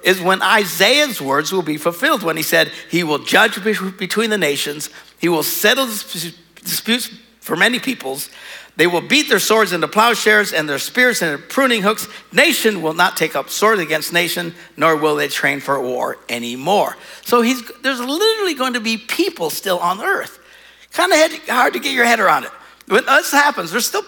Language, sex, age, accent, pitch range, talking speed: English, male, 60-79, American, 150-230 Hz, 185 wpm